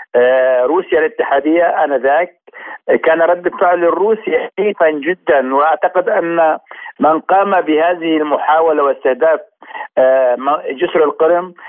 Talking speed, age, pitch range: 90 wpm, 50-69, 145-170 Hz